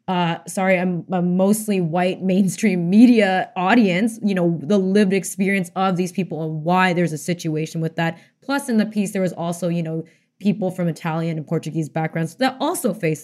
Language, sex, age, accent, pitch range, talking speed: English, female, 20-39, American, 180-215 Hz, 190 wpm